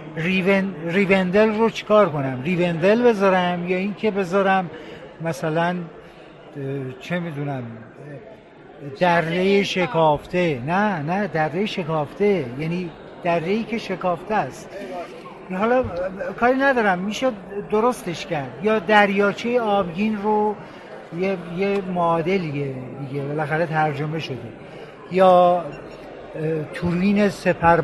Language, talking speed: Persian, 95 wpm